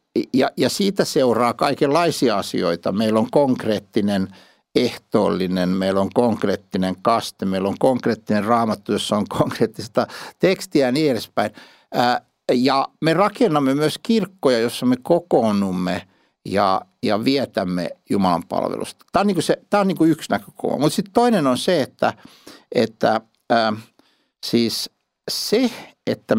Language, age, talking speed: Finnish, 60-79, 115 wpm